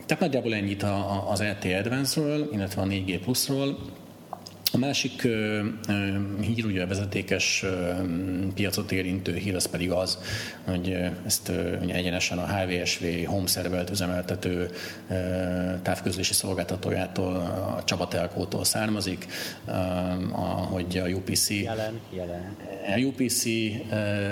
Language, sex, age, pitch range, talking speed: Hungarian, male, 30-49, 90-105 Hz, 105 wpm